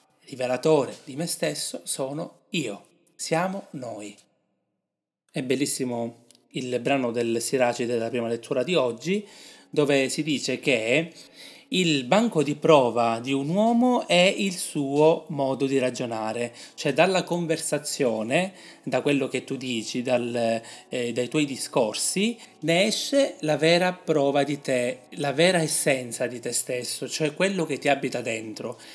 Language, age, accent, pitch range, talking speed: Italian, 30-49, native, 120-160 Hz, 140 wpm